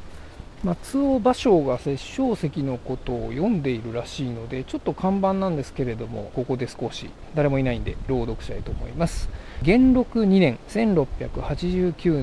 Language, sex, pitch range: Japanese, male, 120-185 Hz